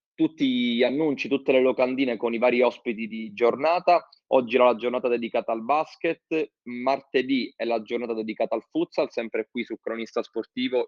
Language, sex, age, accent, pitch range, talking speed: Italian, male, 20-39, native, 115-145 Hz, 170 wpm